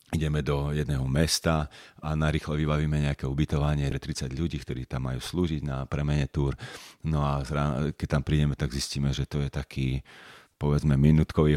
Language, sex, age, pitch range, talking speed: Slovak, male, 40-59, 70-80 Hz, 165 wpm